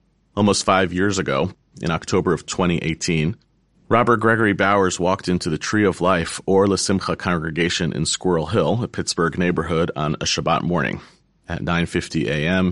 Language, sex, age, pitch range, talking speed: English, male, 40-59, 80-95 Hz, 160 wpm